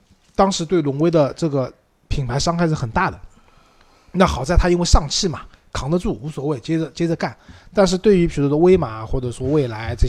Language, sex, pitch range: Chinese, male, 115-155 Hz